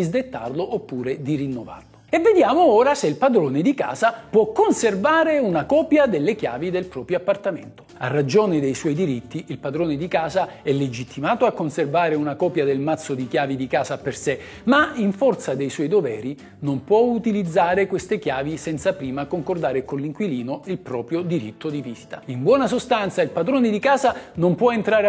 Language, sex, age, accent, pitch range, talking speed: Italian, male, 50-69, native, 150-235 Hz, 180 wpm